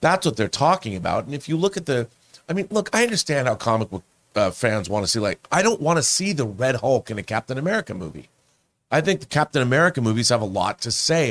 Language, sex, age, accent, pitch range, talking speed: English, male, 40-59, American, 105-145 Hz, 260 wpm